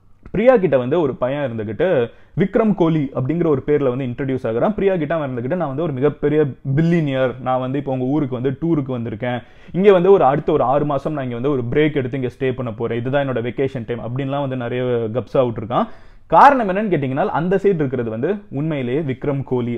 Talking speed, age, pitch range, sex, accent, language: 205 wpm, 30-49, 130-180 Hz, male, native, Tamil